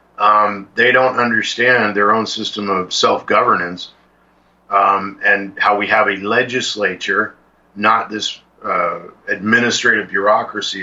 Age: 50-69